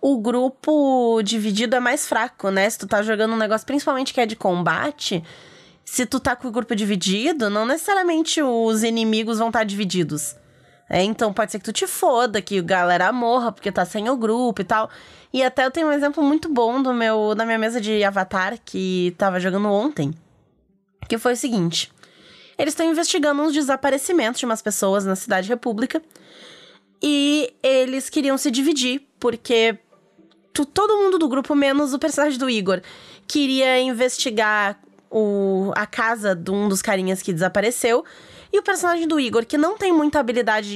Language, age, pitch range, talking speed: Portuguese, 20-39, 210-290 Hz, 180 wpm